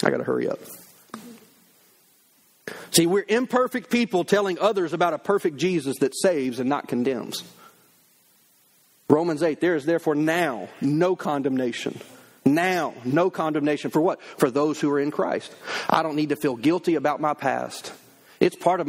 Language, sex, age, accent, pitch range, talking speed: English, male, 40-59, American, 155-215 Hz, 160 wpm